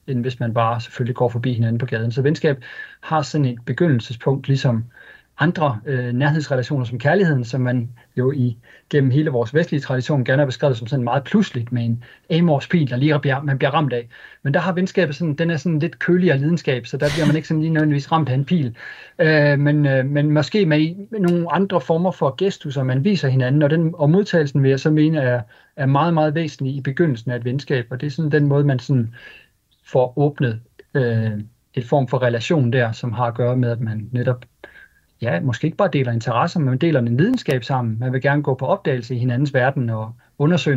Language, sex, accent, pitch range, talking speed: Danish, male, native, 125-155 Hz, 225 wpm